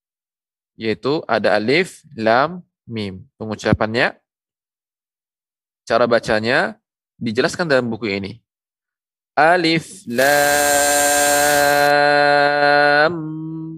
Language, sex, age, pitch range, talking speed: Indonesian, male, 20-39, 115-145 Hz, 60 wpm